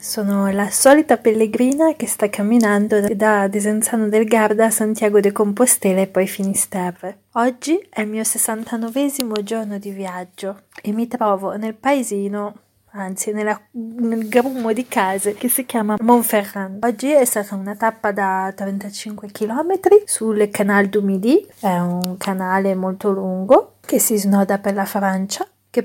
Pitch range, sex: 190-220 Hz, female